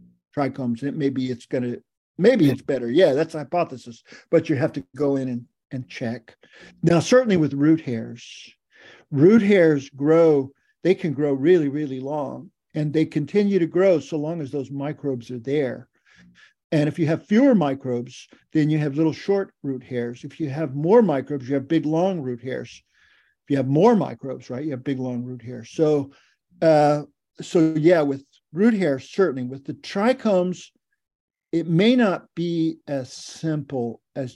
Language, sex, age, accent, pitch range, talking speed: English, male, 50-69, American, 135-165 Hz, 175 wpm